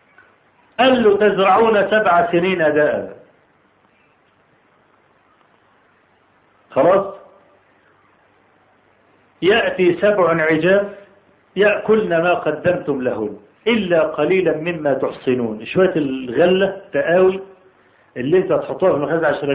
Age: 50-69